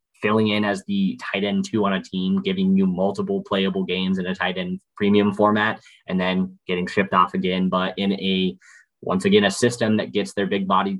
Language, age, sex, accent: English, 20-39, male, American